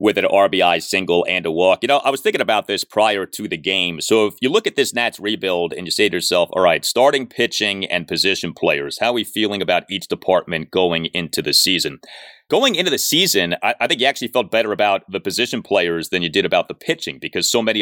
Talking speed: 245 wpm